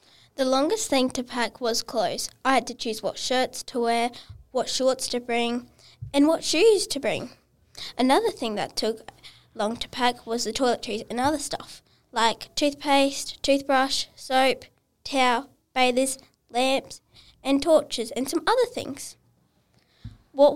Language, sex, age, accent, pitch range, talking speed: English, female, 10-29, Australian, 230-275 Hz, 150 wpm